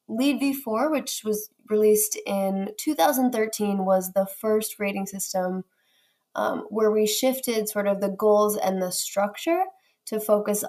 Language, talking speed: English, 140 wpm